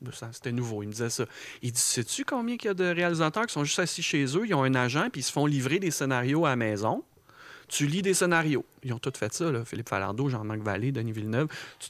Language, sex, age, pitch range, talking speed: French, male, 40-59, 120-145 Hz, 265 wpm